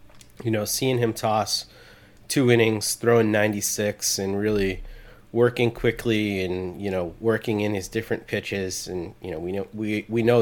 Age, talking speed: 30-49, 165 wpm